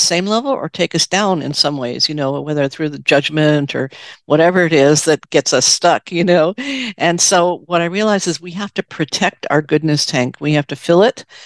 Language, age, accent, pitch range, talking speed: English, 50-69, American, 150-185 Hz, 225 wpm